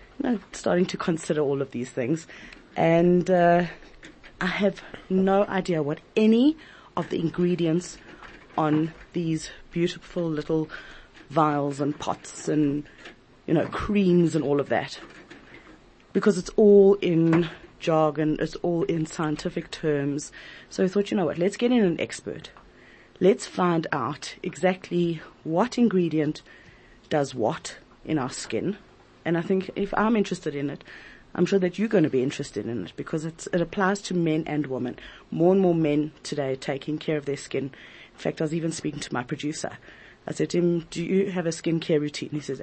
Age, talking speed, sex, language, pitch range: 30-49, 175 wpm, female, English, 155-185 Hz